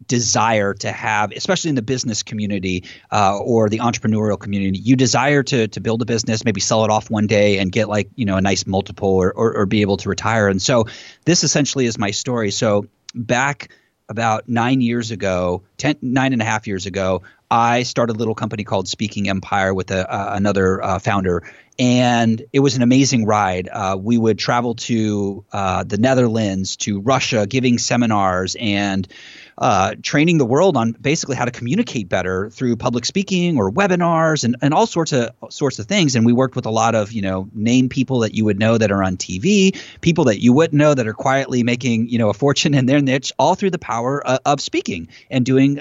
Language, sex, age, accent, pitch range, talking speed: English, male, 30-49, American, 105-130 Hz, 215 wpm